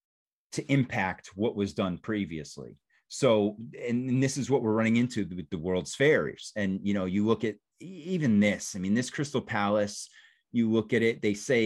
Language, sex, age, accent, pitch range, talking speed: English, male, 30-49, American, 95-125 Hz, 190 wpm